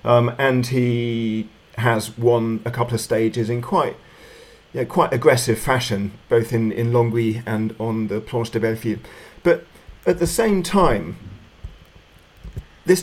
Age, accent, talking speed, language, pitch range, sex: 40-59, British, 145 wpm, English, 115-160 Hz, male